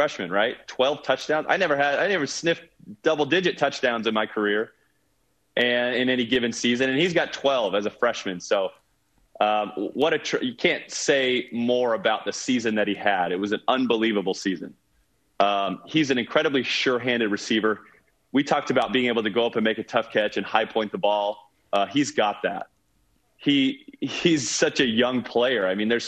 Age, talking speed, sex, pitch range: 30-49, 195 wpm, male, 105-130 Hz